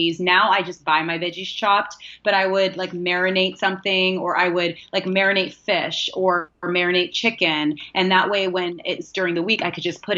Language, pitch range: English, 170-195 Hz